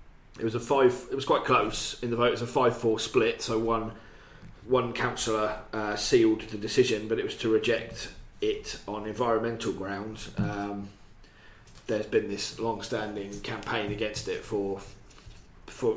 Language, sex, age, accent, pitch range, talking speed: English, male, 30-49, British, 100-115 Hz, 165 wpm